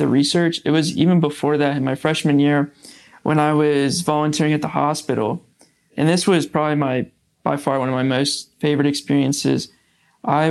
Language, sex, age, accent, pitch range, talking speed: English, male, 20-39, American, 140-155 Hz, 185 wpm